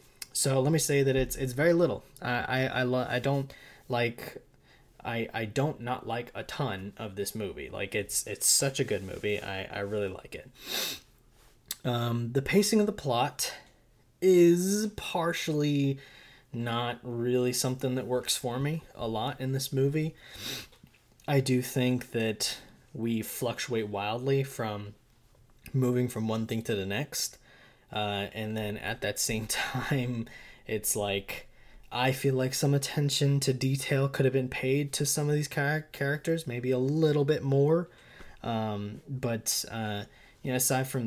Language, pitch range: English, 110-140 Hz